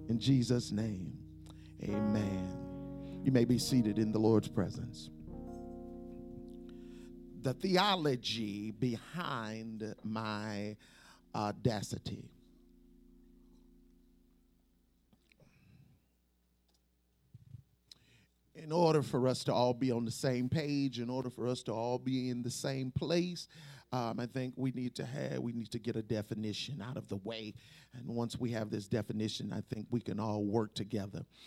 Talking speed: 130 wpm